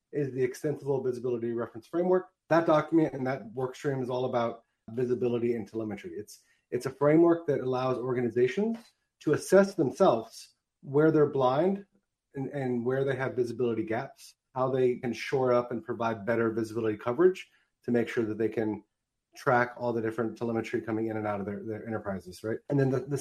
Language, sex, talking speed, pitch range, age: English, male, 185 wpm, 115-145 Hz, 30-49